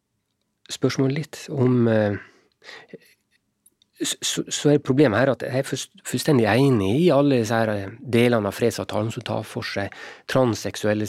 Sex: male